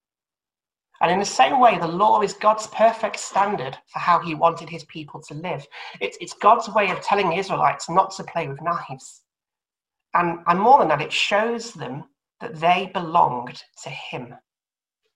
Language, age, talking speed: English, 40-59, 180 wpm